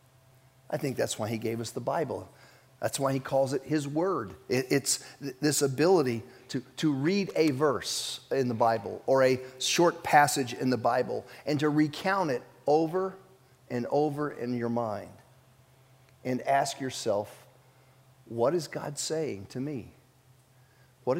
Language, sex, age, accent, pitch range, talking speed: English, male, 50-69, American, 125-140 Hz, 155 wpm